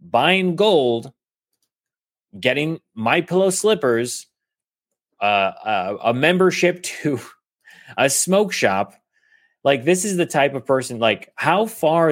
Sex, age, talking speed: male, 30-49, 120 wpm